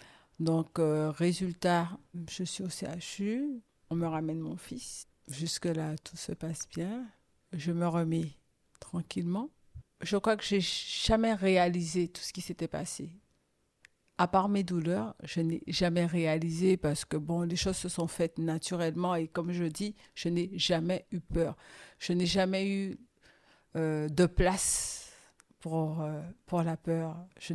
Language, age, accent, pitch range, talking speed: French, 50-69, French, 165-195 Hz, 155 wpm